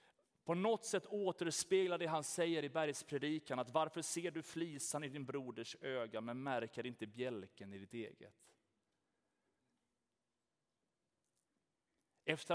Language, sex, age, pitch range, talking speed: Swedish, male, 30-49, 120-160 Hz, 125 wpm